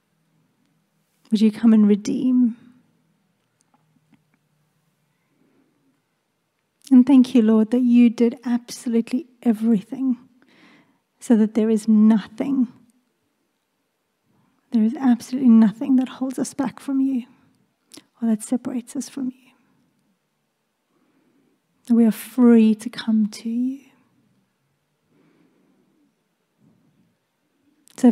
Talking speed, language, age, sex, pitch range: 90 wpm, English, 30-49, female, 225-255 Hz